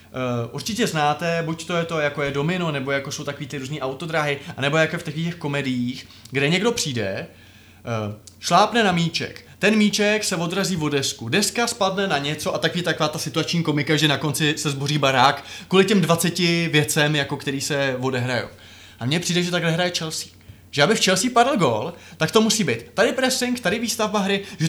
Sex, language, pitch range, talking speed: male, Czech, 140-190 Hz, 195 wpm